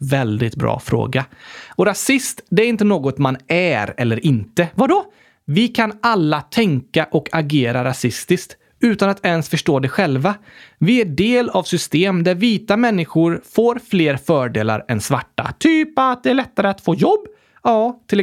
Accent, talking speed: native, 165 wpm